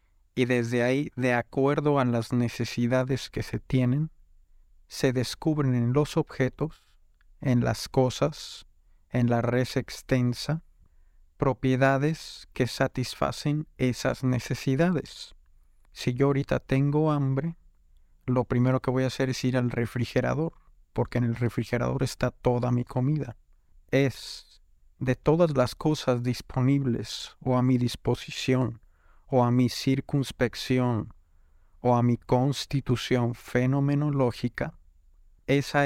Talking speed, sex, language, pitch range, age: 120 wpm, male, Spanish, 120-135 Hz, 50-69